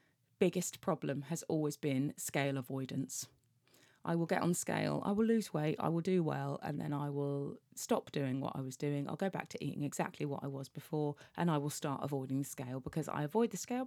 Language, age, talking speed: English, 30-49, 225 wpm